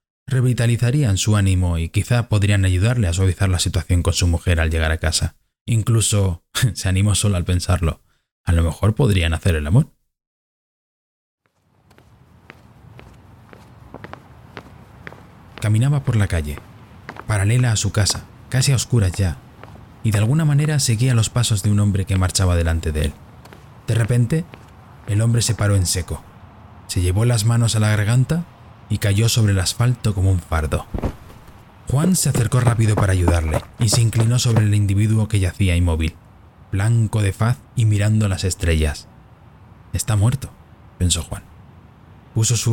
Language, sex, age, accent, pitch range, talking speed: Spanish, male, 20-39, Spanish, 95-115 Hz, 155 wpm